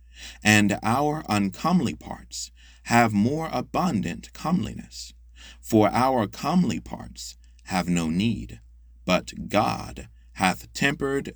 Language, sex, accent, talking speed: English, male, American, 100 wpm